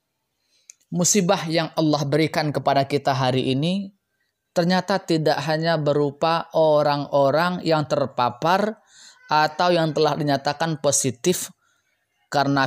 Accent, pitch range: native, 140-175 Hz